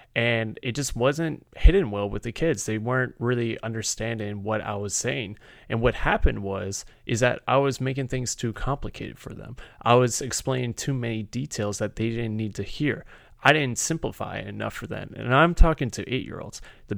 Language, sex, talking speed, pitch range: English, male, 195 wpm, 110-135 Hz